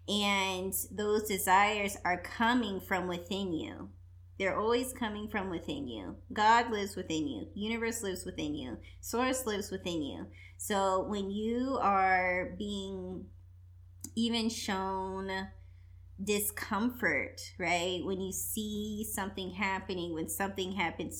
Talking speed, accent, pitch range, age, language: 120 wpm, American, 155-215 Hz, 20-39, English